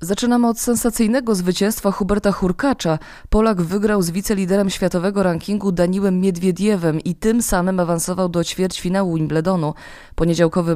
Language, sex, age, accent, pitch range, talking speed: Polish, female, 20-39, native, 165-205 Hz, 125 wpm